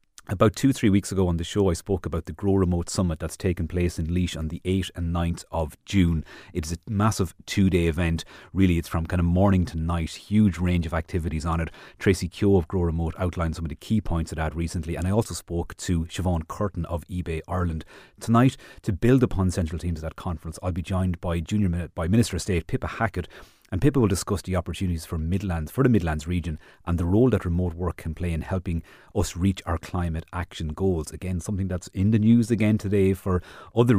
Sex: male